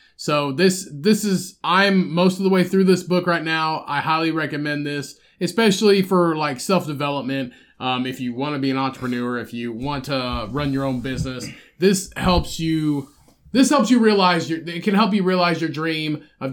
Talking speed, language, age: 195 wpm, English, 20-39